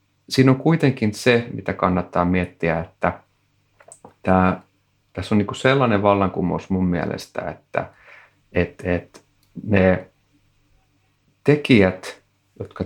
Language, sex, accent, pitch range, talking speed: Finnish, male, native, 95-115 Hz, 105 wpm